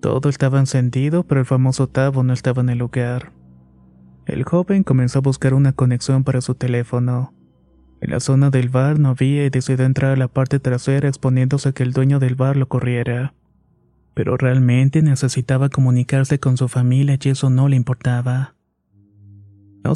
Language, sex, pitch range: Spanish, male, 120-135 Hz